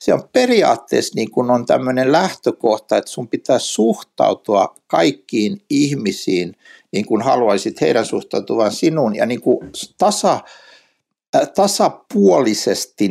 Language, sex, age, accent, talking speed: Finnish, male, 60-79, native, 120 wpm